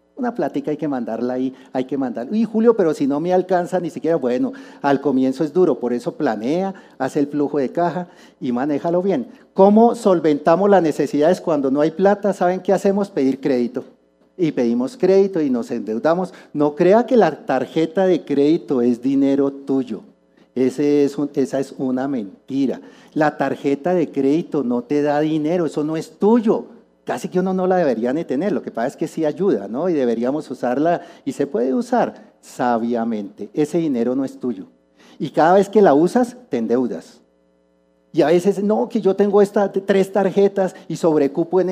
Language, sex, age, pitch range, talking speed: Spanish, male, 50-69, 130-180 Hz, 190 wpm